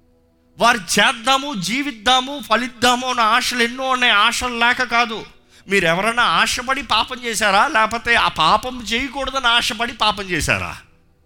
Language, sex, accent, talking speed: Telugu, male, native, 115 wpm